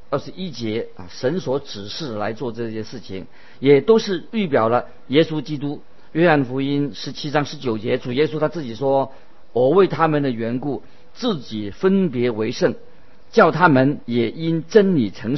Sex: male